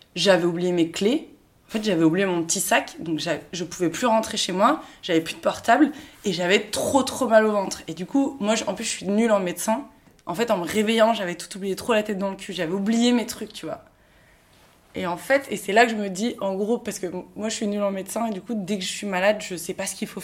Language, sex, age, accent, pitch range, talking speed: French, female, 20-39, French, 185-235 Hz, 285 wpm